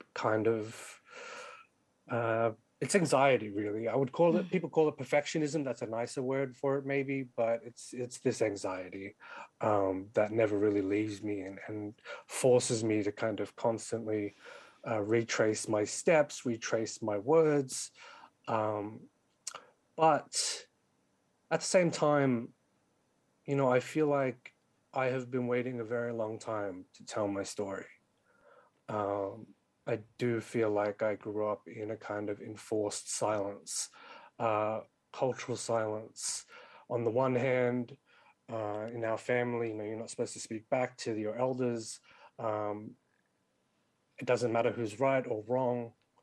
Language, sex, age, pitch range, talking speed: English, male, 30-49, 105-135 Hz, 150 wpm